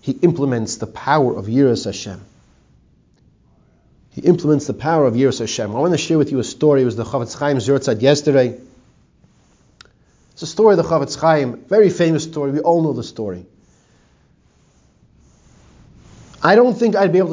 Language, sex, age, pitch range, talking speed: English, male, 30-49, 130-170 Hz, 175 wpm